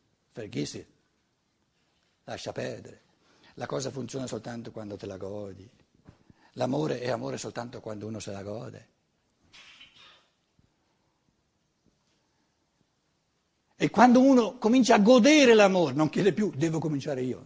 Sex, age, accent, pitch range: male, 60-79, native, 145-240 Hz